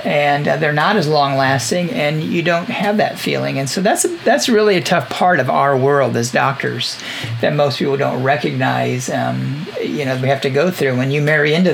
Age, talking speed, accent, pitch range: 50-69, 210 wpm, American, 135-180 Hz